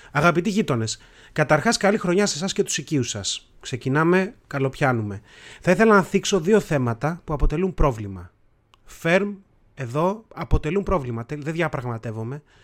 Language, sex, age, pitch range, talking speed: Greek, male, 30-49, 130-185 Hz, 135 wpm